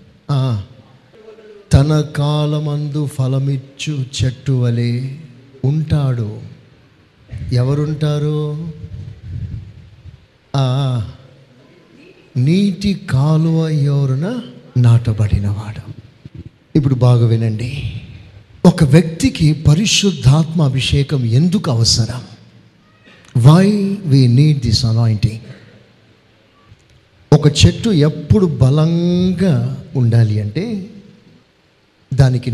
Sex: male